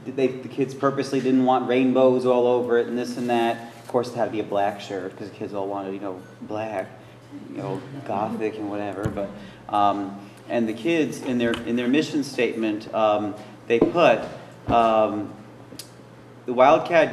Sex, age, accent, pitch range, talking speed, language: male, 40-59, American, 115-135 Hz, 185 wpm, English